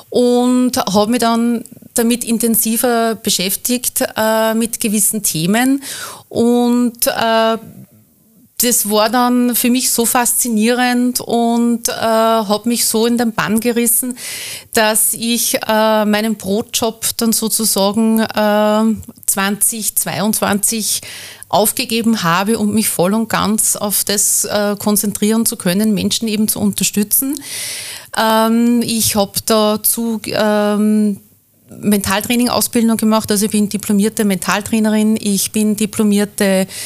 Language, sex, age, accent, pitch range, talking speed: German, female, 30-49, Austrian, 205-230 Hz, 110 wpm